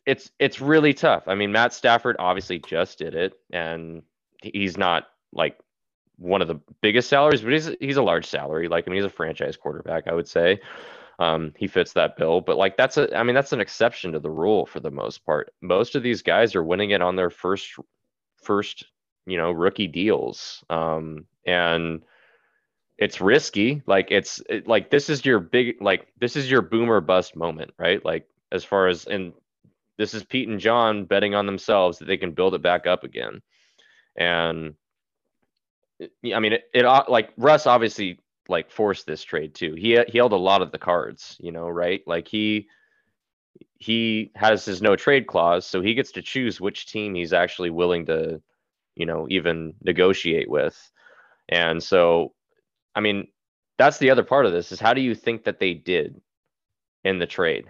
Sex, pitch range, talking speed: male, 85-115 Hz, 190 wpm